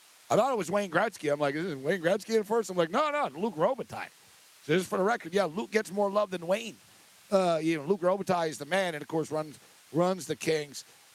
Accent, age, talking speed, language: American, 50-69, 260 wpm, English